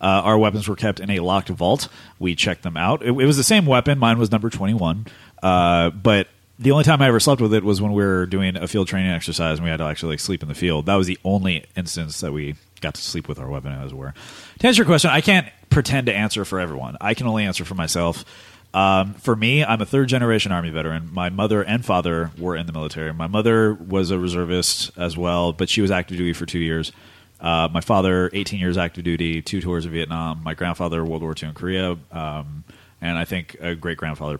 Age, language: 30-49, English